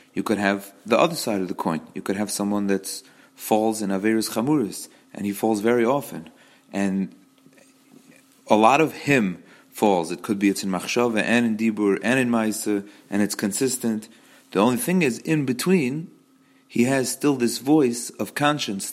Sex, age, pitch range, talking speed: male, 30-49, 105-135 Hz, 180 wpm